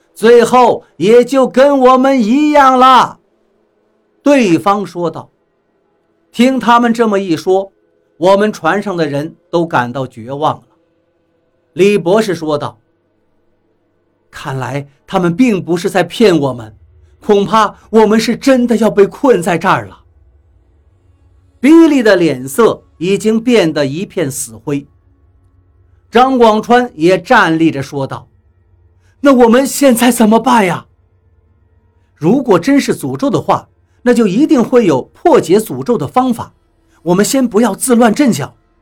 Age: 50-69